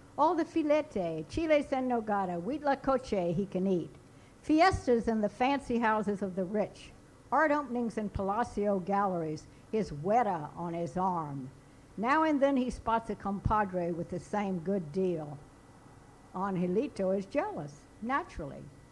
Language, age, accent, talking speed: English, 60-79, American, 145 wpm